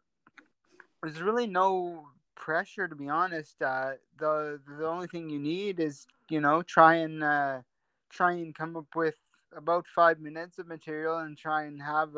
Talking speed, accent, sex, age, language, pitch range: 170 wpm, American, male, 20-39, English, 140-165 Hz